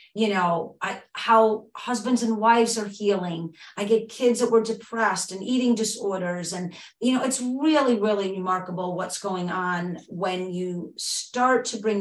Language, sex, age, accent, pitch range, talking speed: English, female, 40-59, American, 180-225 Hz, 160 wpm